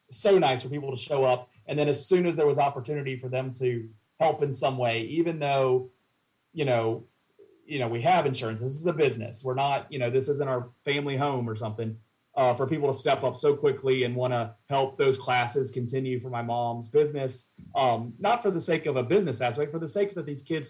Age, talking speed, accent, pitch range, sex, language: 30-49, 230 wpm, American, 120-140 Hz, male, English